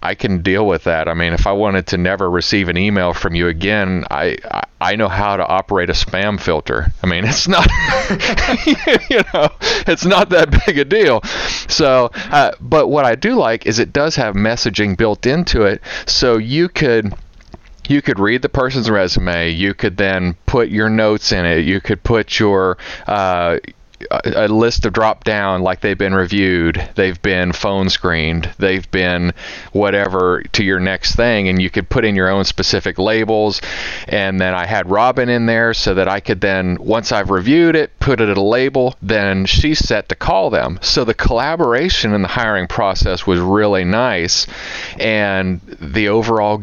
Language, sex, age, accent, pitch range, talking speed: English, male, 40-59, American, 95-115 Hz, 190 wpm